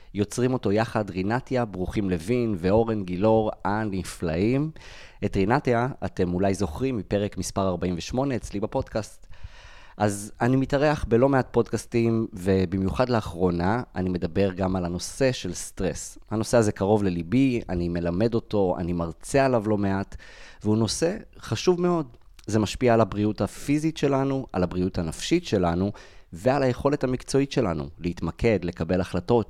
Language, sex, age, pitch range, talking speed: Hebrew, male, 30-49, 90-120 Hz, 135 wpm